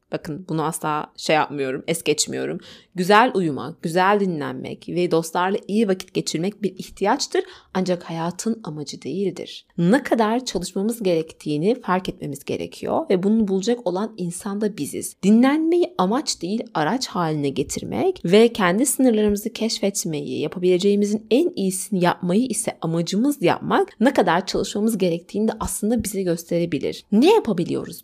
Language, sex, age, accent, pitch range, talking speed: Turkish, female, 30-49, native, 175-235 Hz, 135 wpm